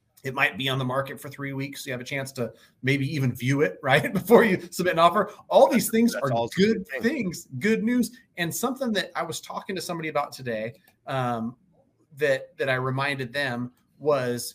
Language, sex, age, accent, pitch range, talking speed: English, male, 30-49, American, 130-175 Hz, 205 wpm